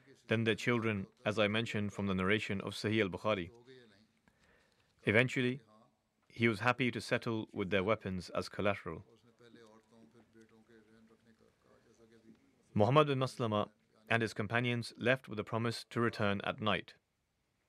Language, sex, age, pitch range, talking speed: English, male, 30-49, 105-120 Hz, 125 wpm